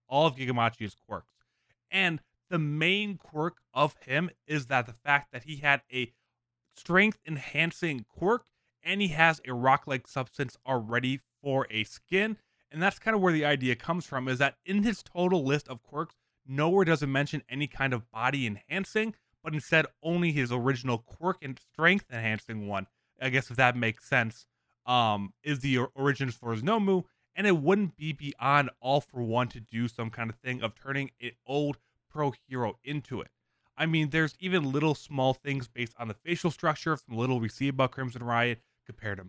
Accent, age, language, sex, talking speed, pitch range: American, 20-39, English, male, 185 wpm, 120-160 Hz